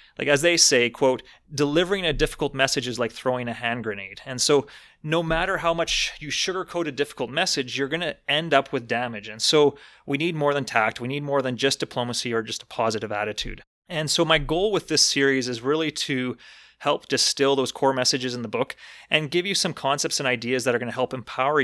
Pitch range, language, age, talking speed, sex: 120-150 Hz, English, 30-49, 225 wpm, male